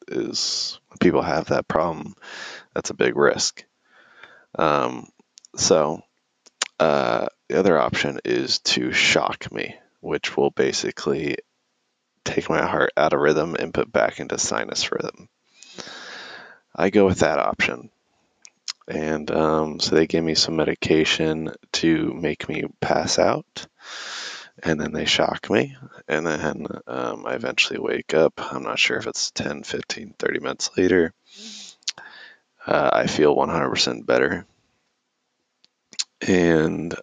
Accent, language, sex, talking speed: American, English, male, 130 wpm